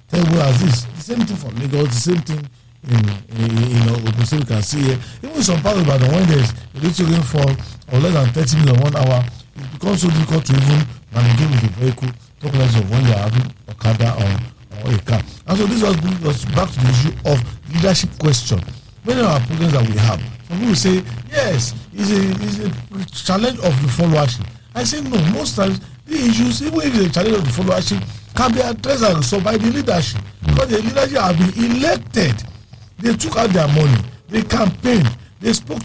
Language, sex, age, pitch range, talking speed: English, male, 50-69, 120-190 Hz, 220 wpm